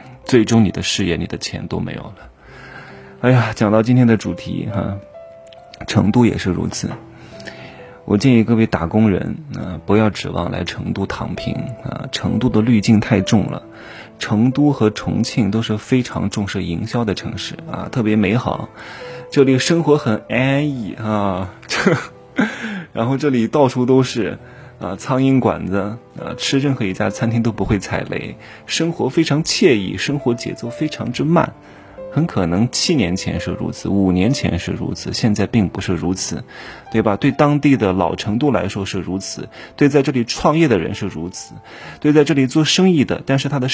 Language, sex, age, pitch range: Chinese, male, 20-39, 100-135 Hz